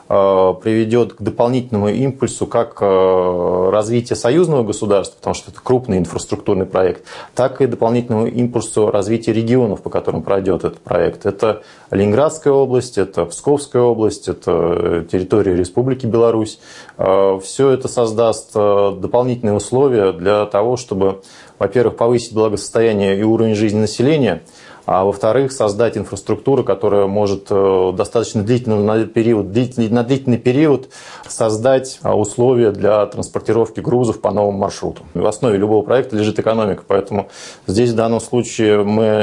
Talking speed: 125 wpm